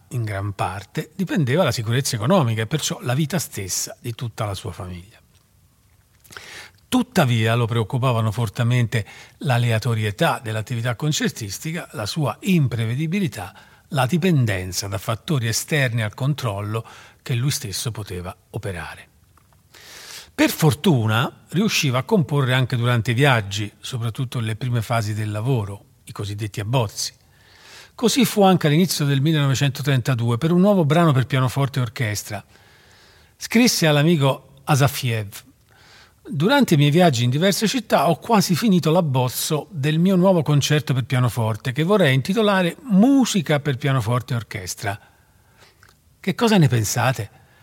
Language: Italian